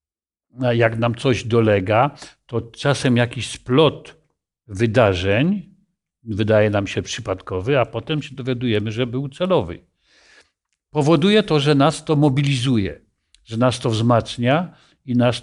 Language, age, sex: Polish, 50-69, male